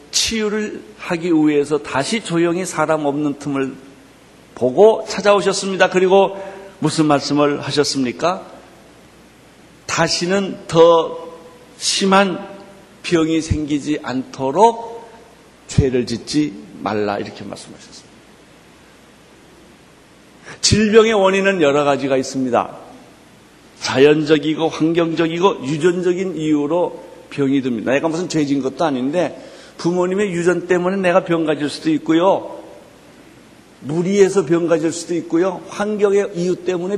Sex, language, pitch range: male, Korean, 150-195 Hz